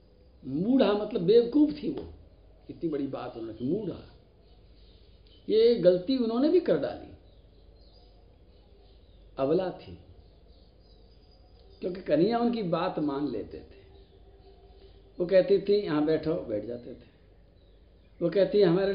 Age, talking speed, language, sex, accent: 60-79, 115 wpm, Hindi, male, native